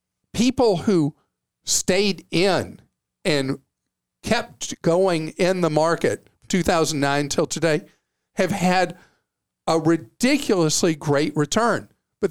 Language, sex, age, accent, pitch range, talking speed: English, male, 50-69, American, 150-195 Hz, 95 wpm